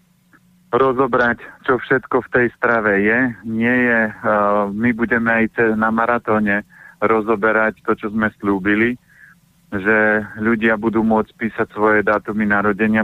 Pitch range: 105-120 Hz